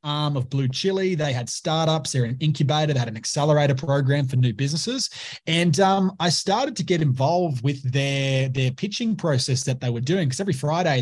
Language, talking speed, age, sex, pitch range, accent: English, 200 wpm, 20-39, male, 130-160 Hz, Australian